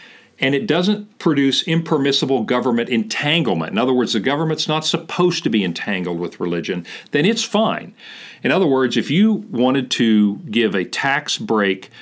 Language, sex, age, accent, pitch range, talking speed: English, male, 50-69, American, 95-135 Hz, 165 wpm